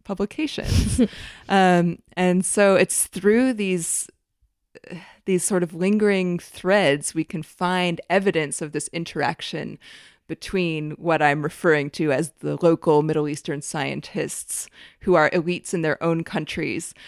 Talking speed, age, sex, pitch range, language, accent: 130 wpm, 20-39, female, 150-180 Hz, English, American